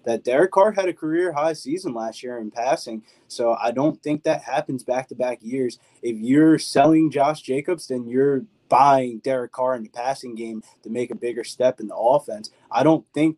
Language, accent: English, American